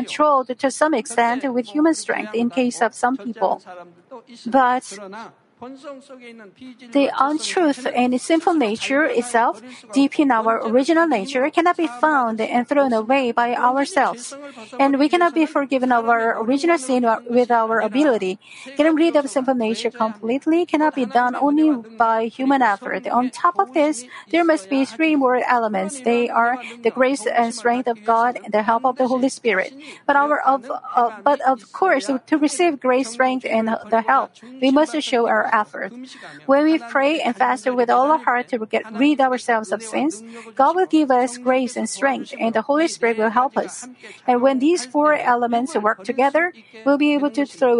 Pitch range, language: 235-285 Hz, Korean